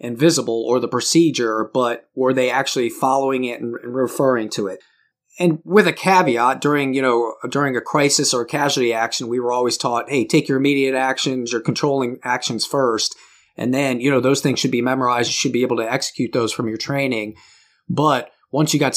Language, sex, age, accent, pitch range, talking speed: English, male, 30-49, American, 125-145 Hz, 205 wpm